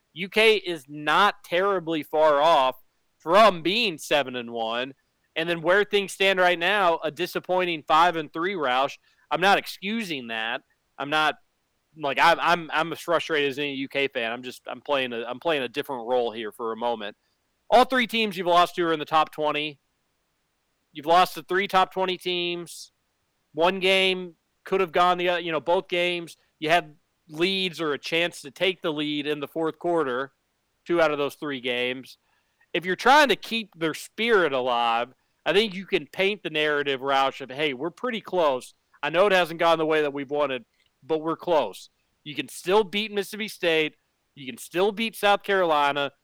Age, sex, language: 40-59, male, English